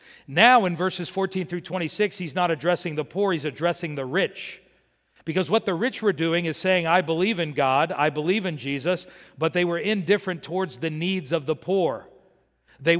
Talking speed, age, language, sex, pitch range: 195 wpm, 50-69, English, male, 160-195 Hz